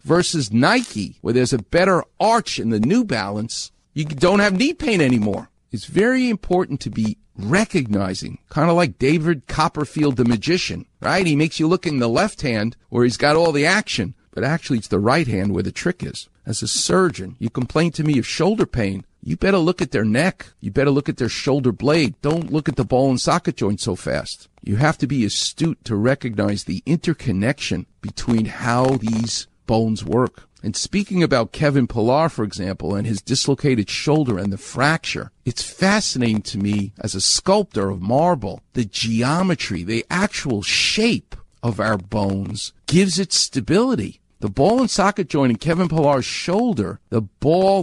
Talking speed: 185 wpm